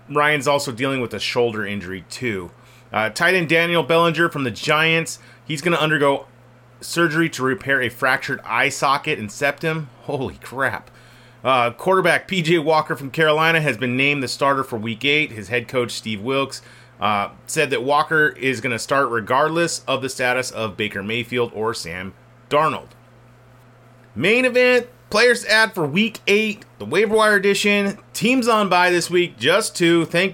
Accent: American